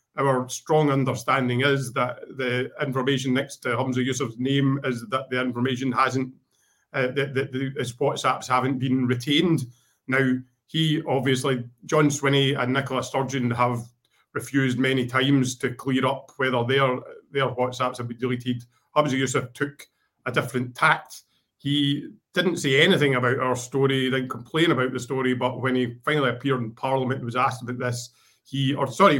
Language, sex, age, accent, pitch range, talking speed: English, male, 30-49, British, 125-140 Hz, 165 wpm